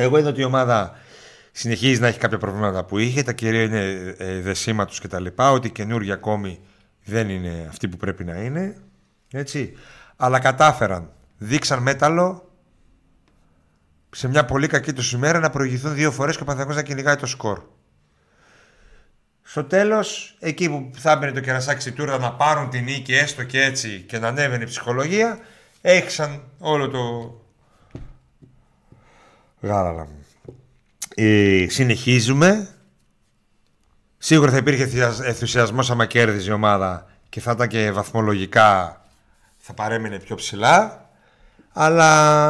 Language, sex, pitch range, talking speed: Greek, male, 105-145 Hz, 135 wpm